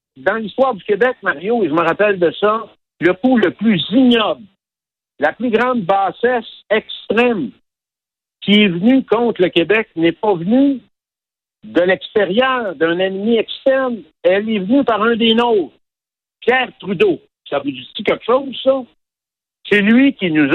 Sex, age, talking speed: male, 60-79, 160 wpm